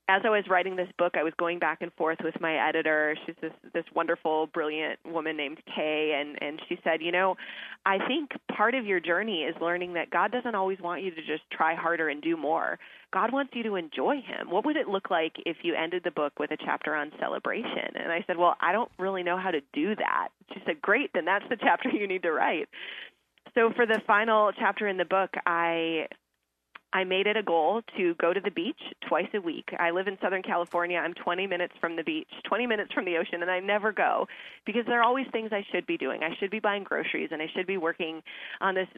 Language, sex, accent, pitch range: English, female, American, 165-205 Hz